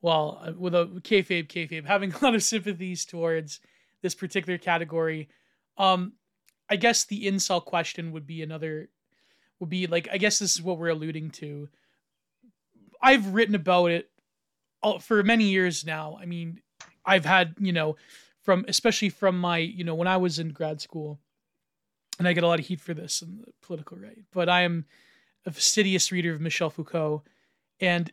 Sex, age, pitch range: male, 20-39, 160-195 Hz